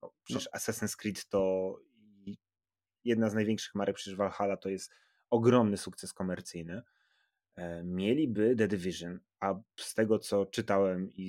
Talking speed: 130 wpm